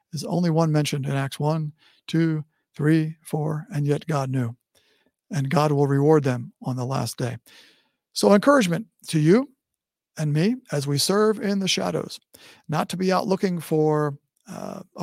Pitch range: 150-190 Hz